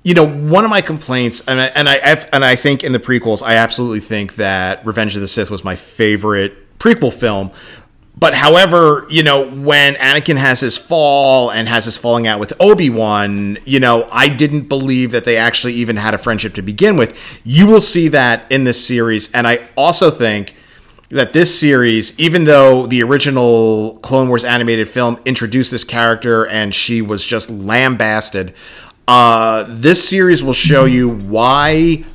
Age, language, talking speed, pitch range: 30-49, English, 175 wpm, 110-135 Hz